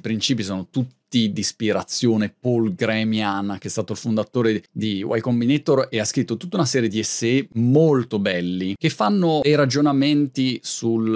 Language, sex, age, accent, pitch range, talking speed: Italian, male, 30-49, native, 110-140 Hz, 165 wpm